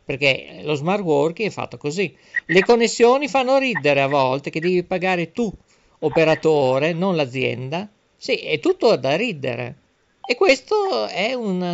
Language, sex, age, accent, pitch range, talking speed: Italian, male, 50-69, native, 140-220 Hz, 150 wpm